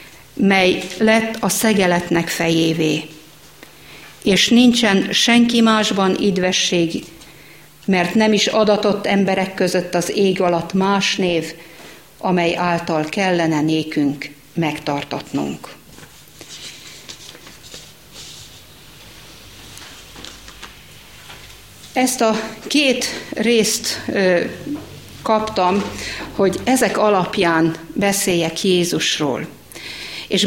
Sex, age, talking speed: female, 50-69, 75 wpm